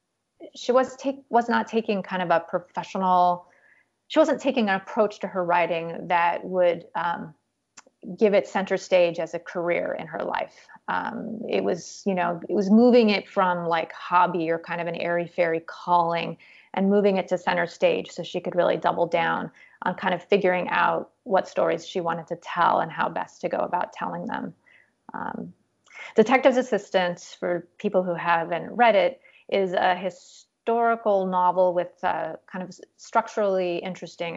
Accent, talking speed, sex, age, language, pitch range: American, 175 wpm, female, 30-49, English, 170-200 Hz